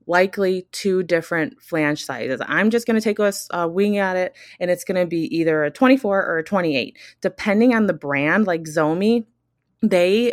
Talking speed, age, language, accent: 185 wpm, 20-39, English, American